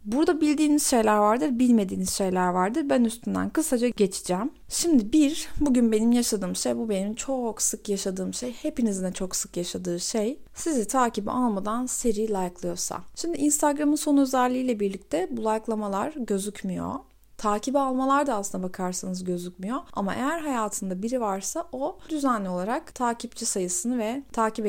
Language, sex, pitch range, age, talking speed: Turkish, female, 195-260 Hz, 30-49, 145 wpm